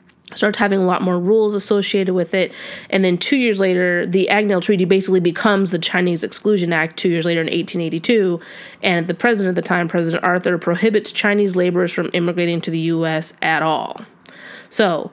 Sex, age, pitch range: female, 20-39, 165-195 Hz